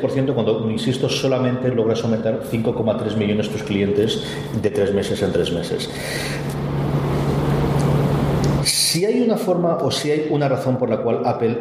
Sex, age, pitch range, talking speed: male, 40-59, 120-140 Hz, 150 wpm